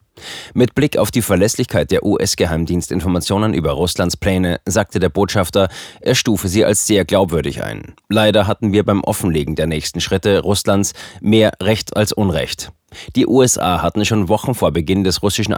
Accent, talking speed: German, 160 wpm